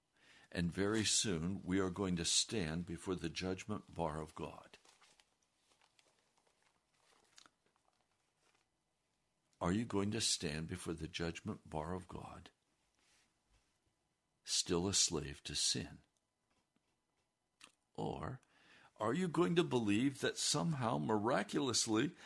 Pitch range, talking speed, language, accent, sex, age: 95-150 Hz, 105 wpm, English, American, male, 60-79